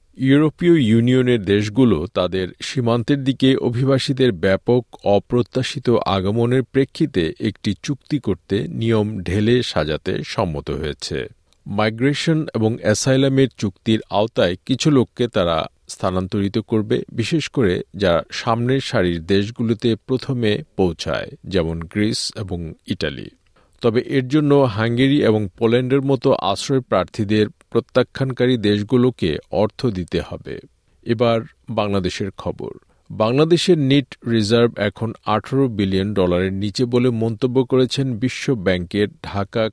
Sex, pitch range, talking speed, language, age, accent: male, 100-130 Hz, 100 wpm, Bengali, 50-69, native